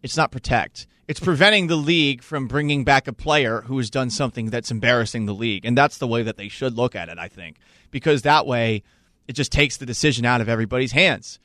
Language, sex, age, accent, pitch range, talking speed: English, male, 30-49, American, 125-180 Hz, 230 wpm